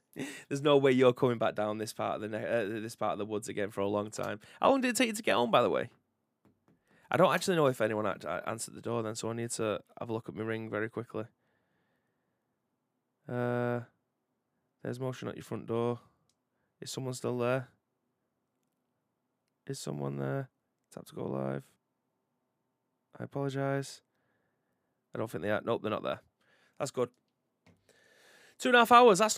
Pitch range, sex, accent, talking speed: 115-155 Hz, male, British, 190 wpm